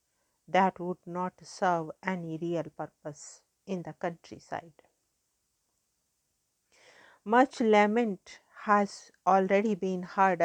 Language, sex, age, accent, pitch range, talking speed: English, female, 50-69, Indian, 165-190 Hz, 90 wpm